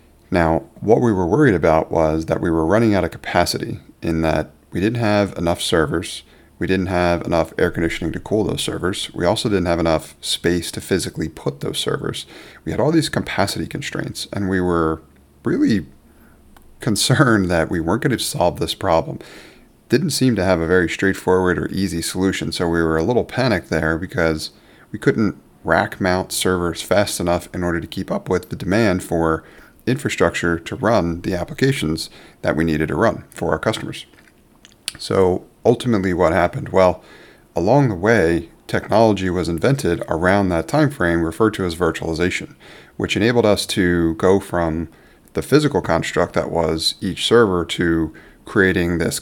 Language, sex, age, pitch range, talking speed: English, male, 30-49, 80-95 Hz, 175 wpm